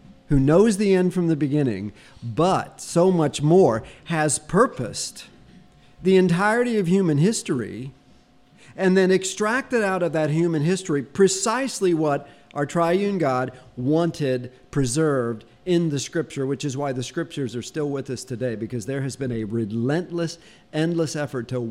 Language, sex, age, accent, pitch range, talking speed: English, male, 50-69, American, 125-170 Hz, 150 wpm